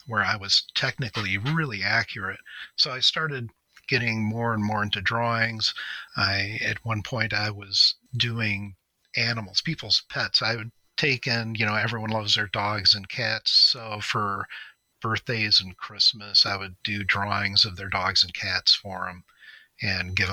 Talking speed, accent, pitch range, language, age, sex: 160 wpm, American, 100-125 Hz, English, 40-59, male